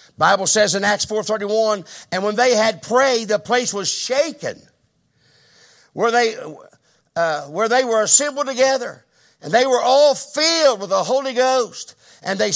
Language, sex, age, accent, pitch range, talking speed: English, male, 50-69, American, 190-270 Hz, 155 wpm